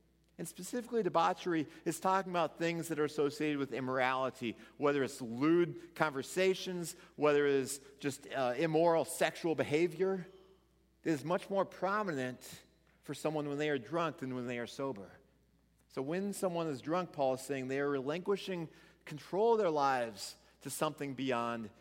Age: 40-59